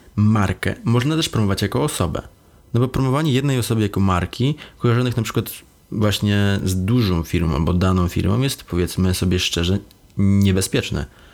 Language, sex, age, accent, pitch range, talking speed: Polish, male, 20-39, native, 85-105 Hz, 150 wpm